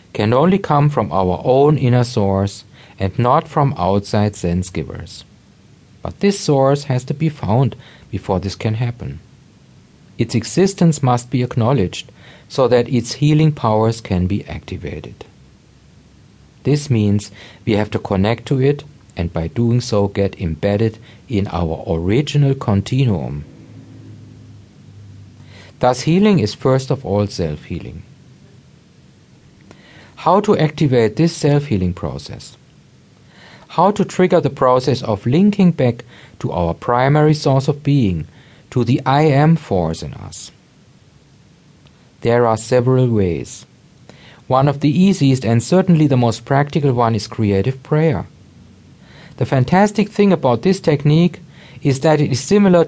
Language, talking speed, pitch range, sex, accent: English, 135 wpm, 105-150 Hz, male, German